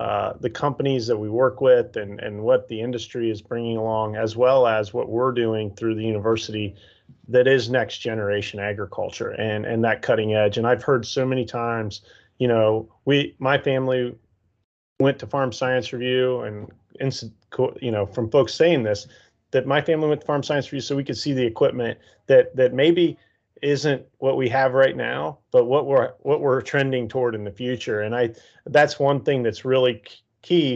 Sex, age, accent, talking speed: male, 30-49, American, 195 wpm